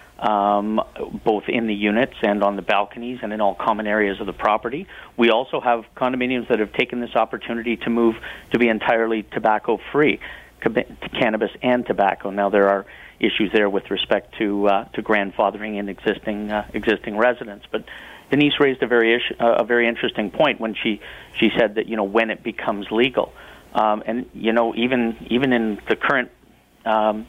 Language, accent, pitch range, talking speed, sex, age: English, American, 105-115 Hz, 180 wpm, male, 50-69